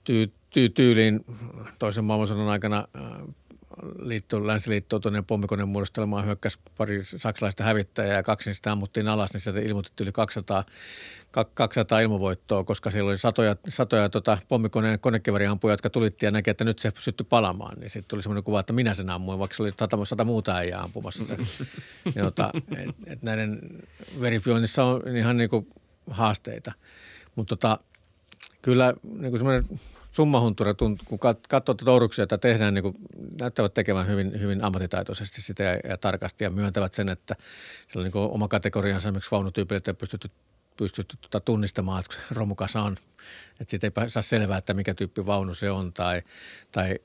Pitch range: 100-115 Hz